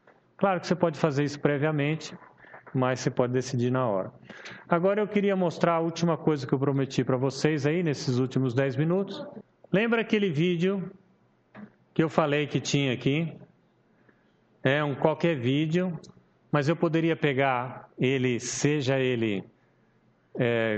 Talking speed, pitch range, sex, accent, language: 145 wpm, 135-180 Hz, male, Brazilian, Portuguese